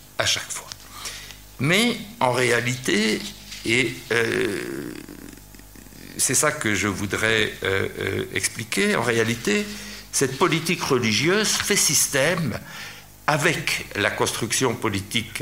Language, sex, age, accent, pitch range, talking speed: French, male, 60-79, French, 105-140 Hz, 100 wpm